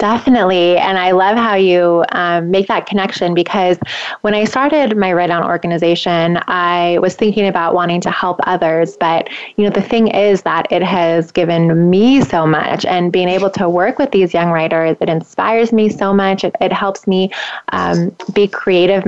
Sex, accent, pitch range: female, American, 175-215 Hz